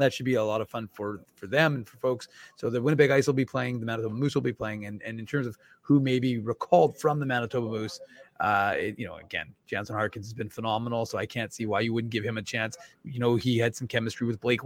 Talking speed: 270 wpm